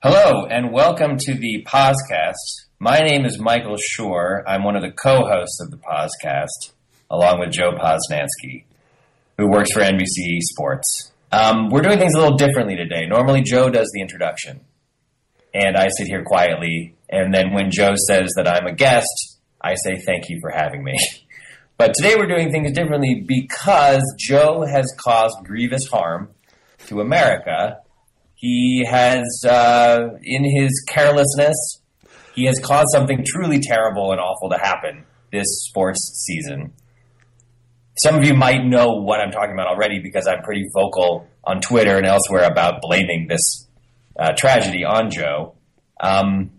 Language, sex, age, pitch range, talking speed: English, male, 30-49, 100-140 Hz, 155 wpm